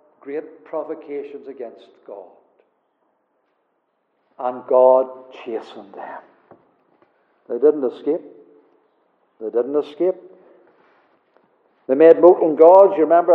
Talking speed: 90 wpm